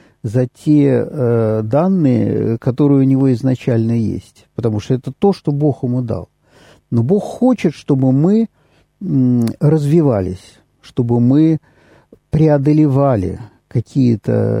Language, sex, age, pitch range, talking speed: Russian, male, 50-69, 115-145 Hz, 110 wpm